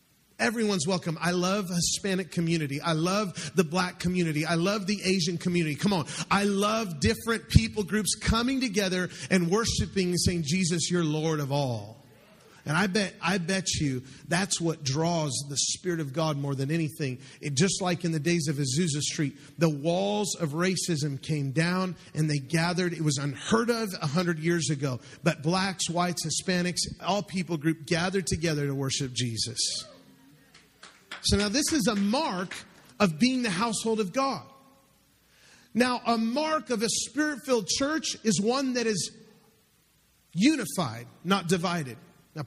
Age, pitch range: 40-59, 160-205 Hz